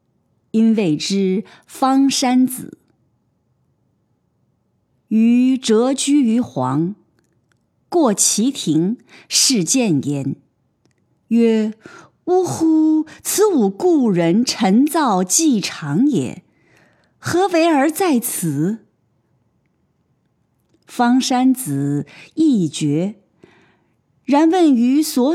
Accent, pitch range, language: native, 165-265 Hz, Chinese